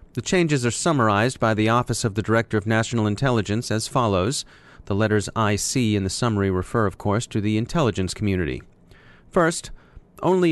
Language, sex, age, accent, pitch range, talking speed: English, male, 30-49, American, 105-135 Hz, 170 wpm